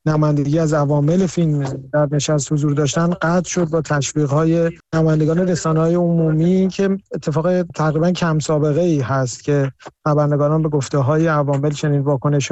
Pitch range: 150-170 Hz